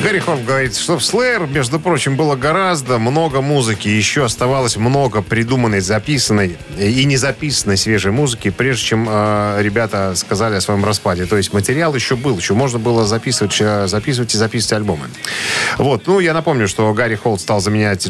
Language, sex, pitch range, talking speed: Russian, male, 100-135 Hz, 170 wpm